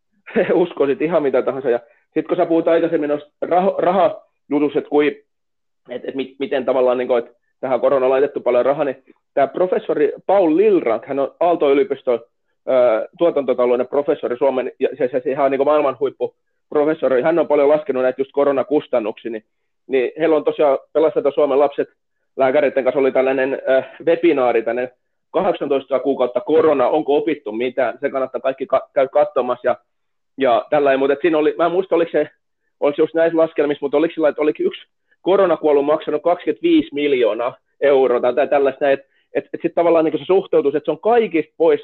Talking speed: 170 wpm